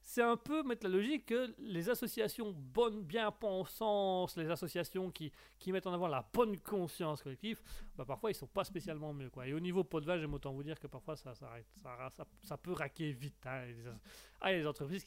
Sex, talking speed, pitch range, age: male, 240 wpm, 140-190 Hz, 30-49